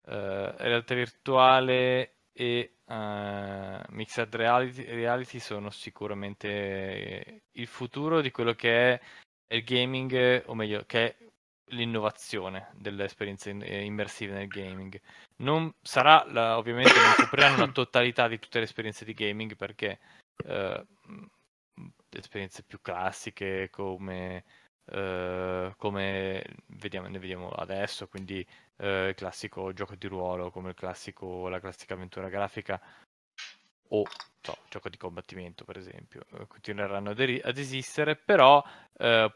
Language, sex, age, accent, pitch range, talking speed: Italian, male, 20-39, native, 100-125 Hz, 120 wpm